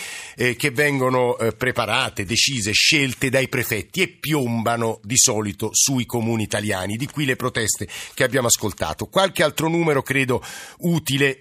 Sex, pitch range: male, 115-150 Hz